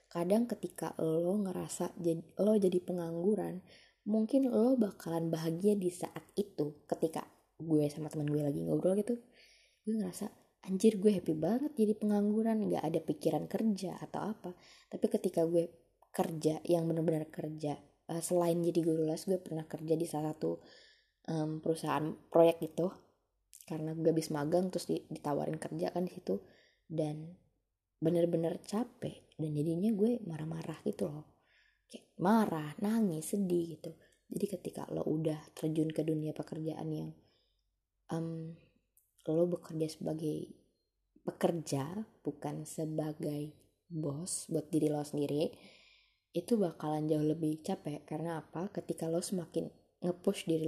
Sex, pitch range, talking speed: female, 155-185 Hz, 135 wpm